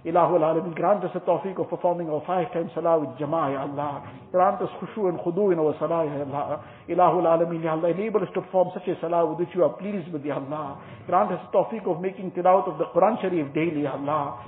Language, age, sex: English, 60-79, male